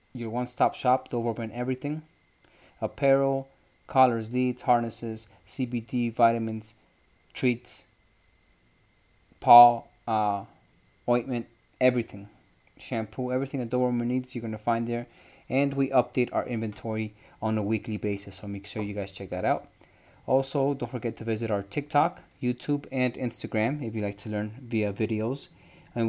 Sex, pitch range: male, 105-120 Hz